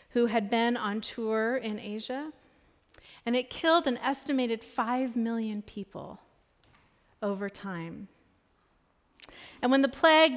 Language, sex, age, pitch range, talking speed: English, female, 40-59, 215-255 Hz, 120 wpm